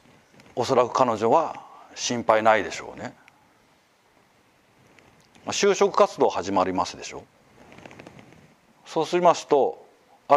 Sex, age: male, 40-59